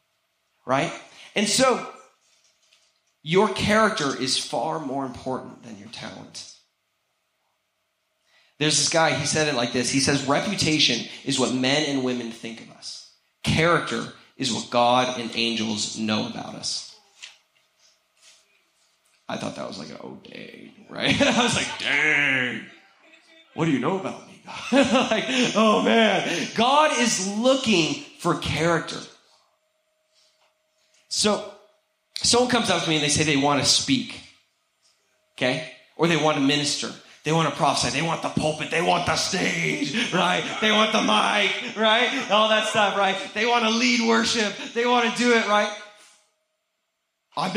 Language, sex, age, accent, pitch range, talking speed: English, male, 30-49, American, 145-230 Hz, 150 wpm